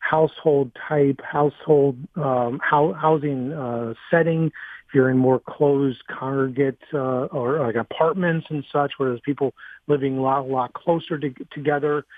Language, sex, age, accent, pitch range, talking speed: English, male, 40-59, American, 135-165 Hz, 155 wpm